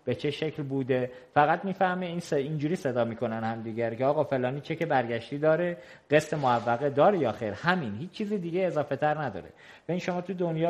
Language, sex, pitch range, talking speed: Persian, male, 130-170 Hz, 210 wpm